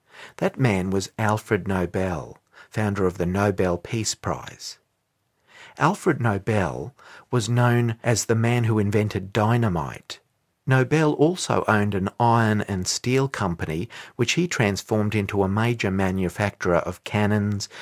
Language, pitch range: English, 95-120 Hz